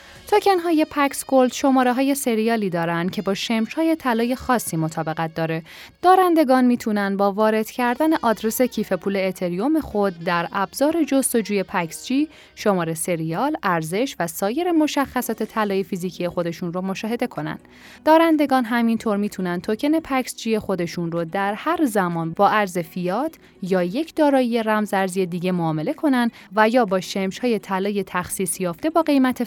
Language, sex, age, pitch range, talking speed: Persian, female, 10-29, 180-260 Hz, 145 wpm